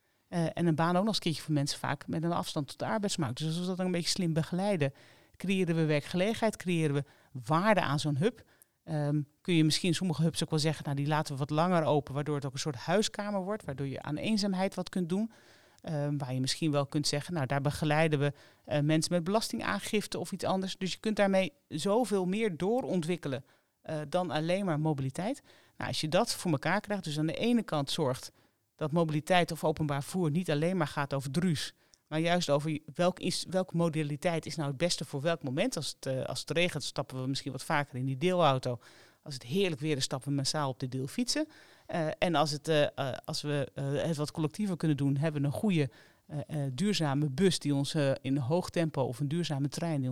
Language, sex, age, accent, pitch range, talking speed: Dutch, male, 40-59, Dutch, 145-180 Hz, 230 wpm